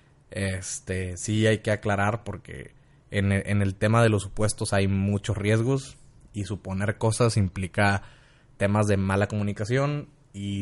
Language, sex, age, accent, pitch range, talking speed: Spanish, male, 20-39, Mexican, 100-130 Hz, 145 wpm